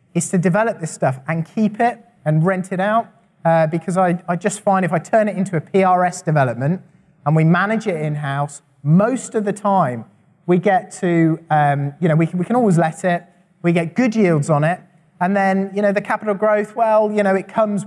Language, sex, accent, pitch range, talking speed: English, male, British, 160-210 Hz, 220 wpm